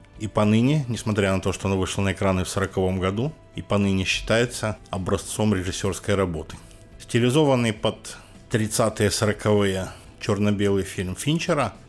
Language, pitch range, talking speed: Ukrainian, 95-110 Hz, 130 wpm